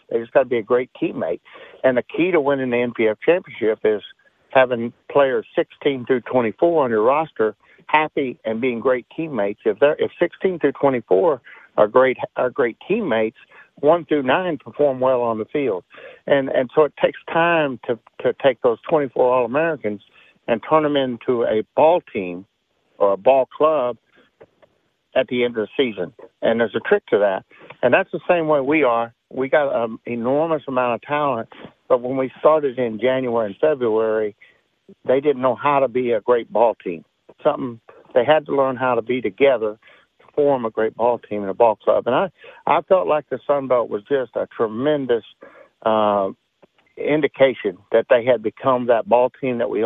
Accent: American